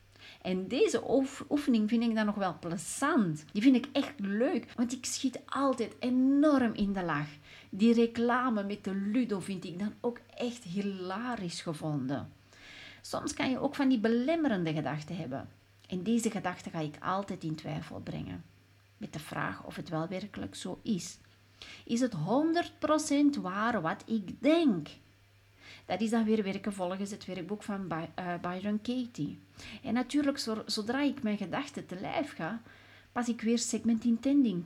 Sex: female